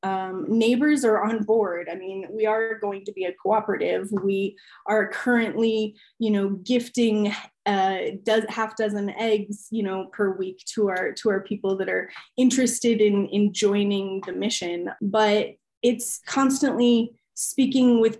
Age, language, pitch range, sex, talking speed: 20-39, English, 205-235 Hz, female, 150 wpm